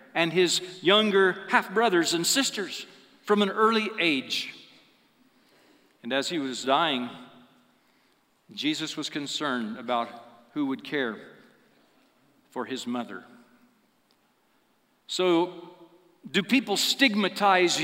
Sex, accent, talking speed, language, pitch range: male, American, 100 wpm, English, 140-220 Hz